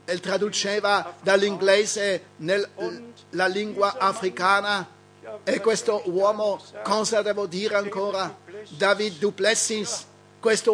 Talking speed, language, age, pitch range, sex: 90 wpm, Italian, 50-69, 200-220 Hz, male